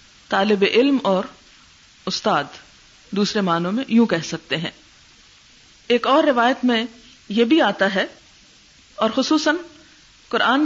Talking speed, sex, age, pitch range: 125 wpm, female, 50-69, 200-255 Hz